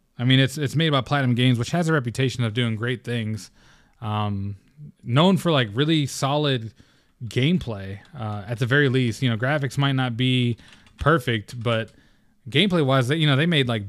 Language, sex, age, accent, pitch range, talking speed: English, male, 20-39, American, 115-140 Hz, 185 wpm